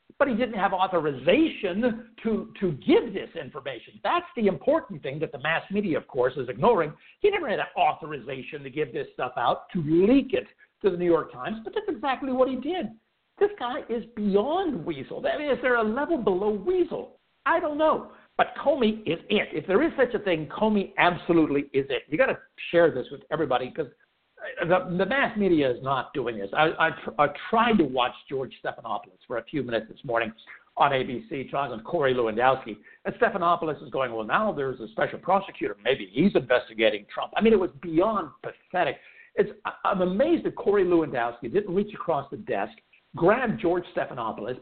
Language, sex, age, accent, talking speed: English, male, 60-79, American, 200 wpm